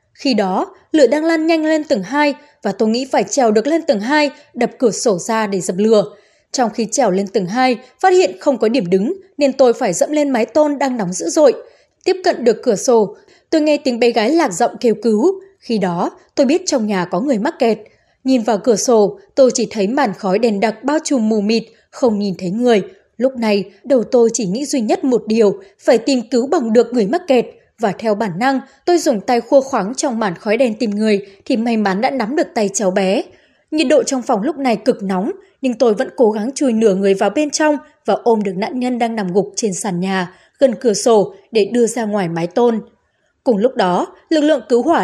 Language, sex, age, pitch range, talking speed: Vietnamese, female, 20-39, 210-285 Hz, 240 wpm